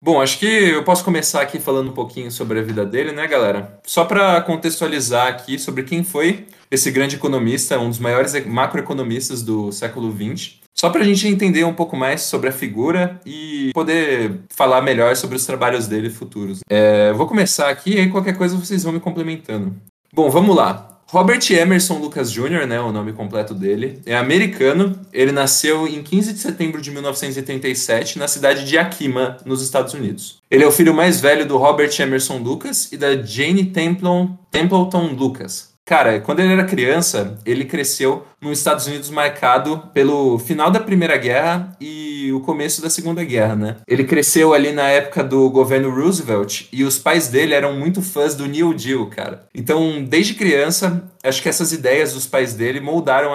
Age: 20-39